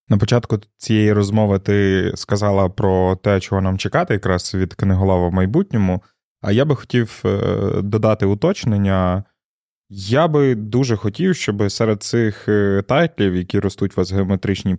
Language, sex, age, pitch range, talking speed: Ukrainian, male, 20-39, 95-110 Hz, 145 wpm